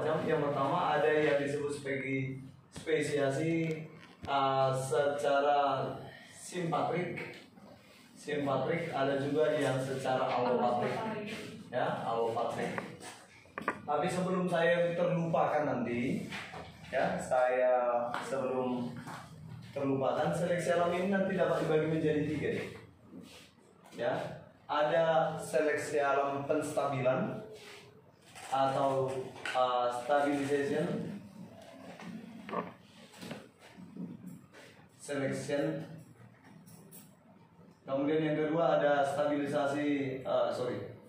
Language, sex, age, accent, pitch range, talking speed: Indonesian, male, 20-39, native, 130-155 Hz, 75 wpm